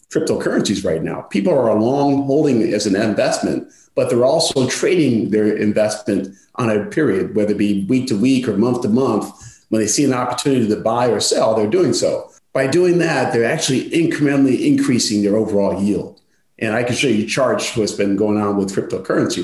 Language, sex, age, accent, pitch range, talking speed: English, male, 40-59, American, 100-130 Hz, 195 wpm